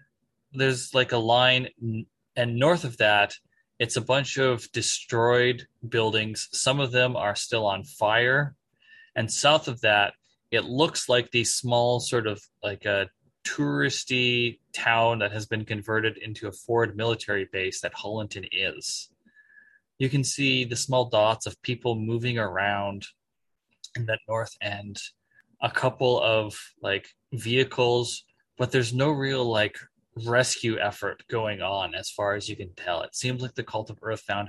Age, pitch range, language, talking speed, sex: 20-39, 105-125 Hz, English, 155 wpm, male